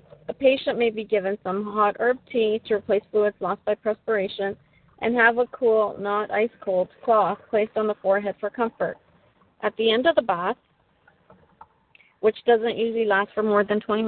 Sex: female